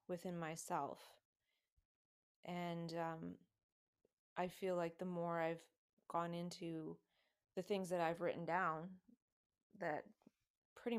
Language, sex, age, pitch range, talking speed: English, female, 20-39, 160-180 Hz, 110 wpm